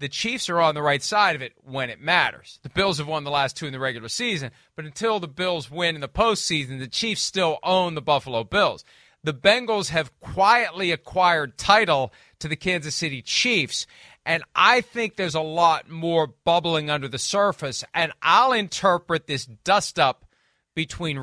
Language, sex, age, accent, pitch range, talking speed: English, male, 40-59, American, 155-210 Hz, 185 wpm